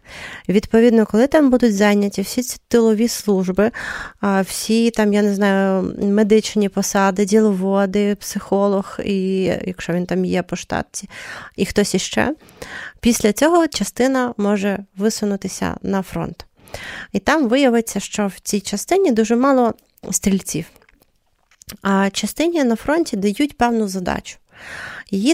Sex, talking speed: female, 130 wpm